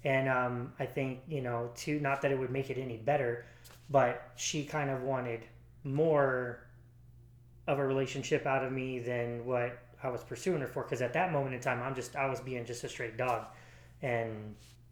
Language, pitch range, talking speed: English, 115-135 Hz, 200 wpm